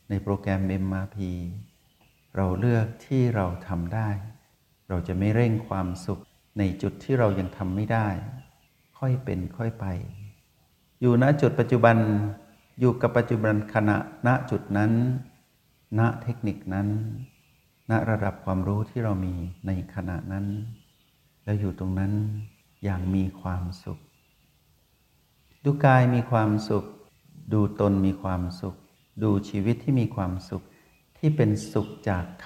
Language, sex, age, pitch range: Thai, male, 60-79, 95-120 Hz